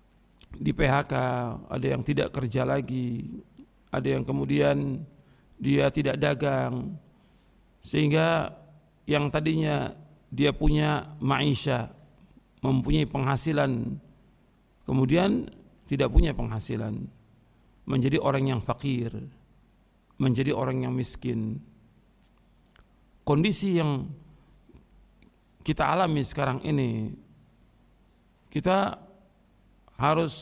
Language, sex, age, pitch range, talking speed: Indonesian, male, 50-69, 130-160 Hz, 80 wpm